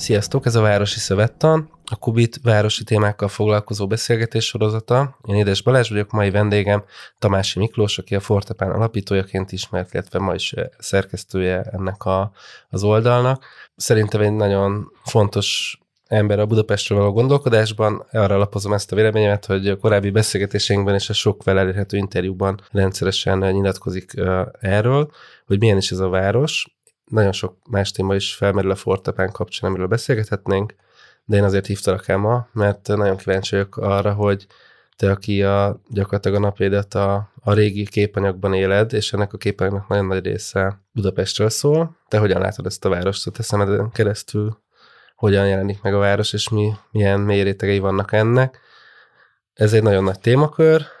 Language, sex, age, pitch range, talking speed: Hungarian, male, 20-39, 100-110 Hz, 155 wpm